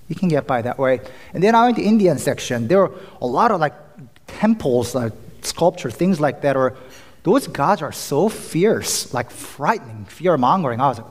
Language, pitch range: English, 130-190 Hz